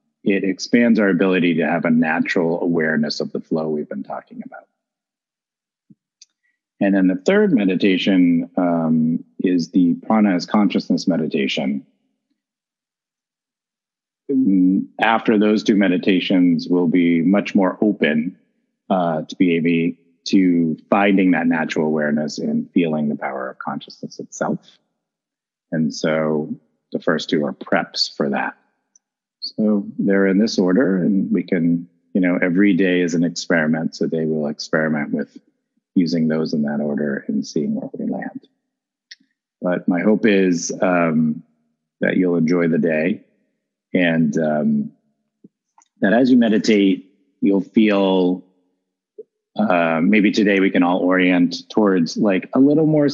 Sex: male